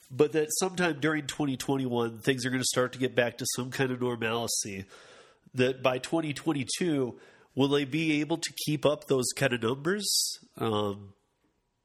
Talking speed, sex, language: 165 wpm, male, English